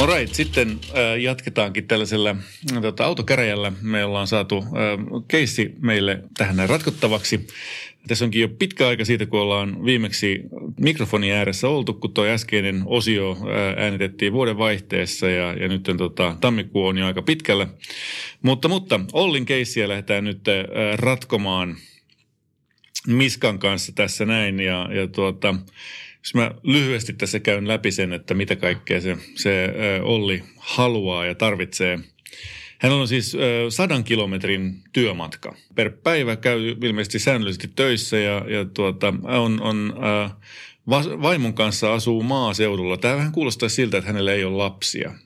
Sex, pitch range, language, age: male, 95-120 Hz, Finnish, 30-49